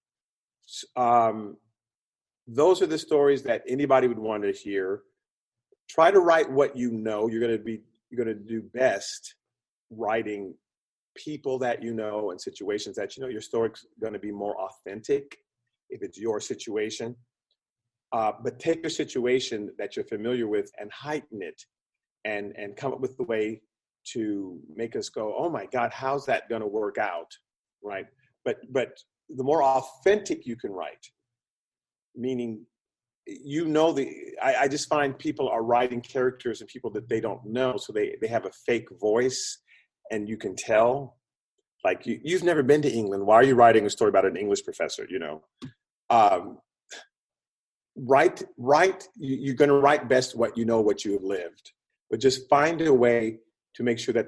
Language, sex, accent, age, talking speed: English, male, American, 40-59, 175 wpm